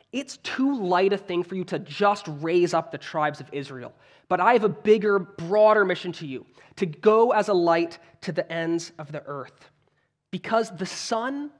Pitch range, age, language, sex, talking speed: 140-200 Hz, 20-39, English, male, 195 wpm